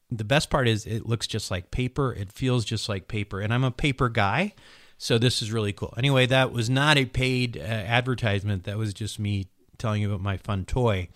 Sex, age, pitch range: male, 40-59, 100-125 Hz